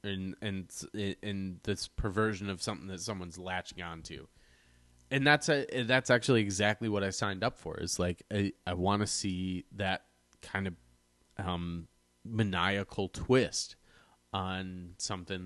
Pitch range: 75-105 Hz